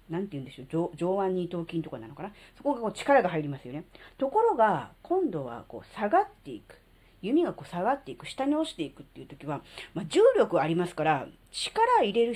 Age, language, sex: 40-59, Japanese, female